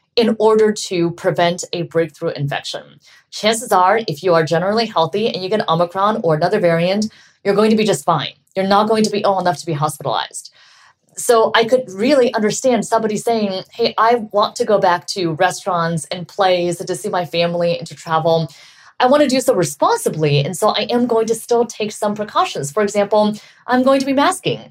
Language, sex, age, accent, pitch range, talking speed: English, female, 30-49, American, 175-225 Hz, 205 wpm